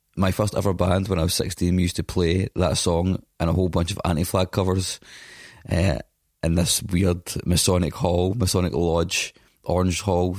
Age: 20-39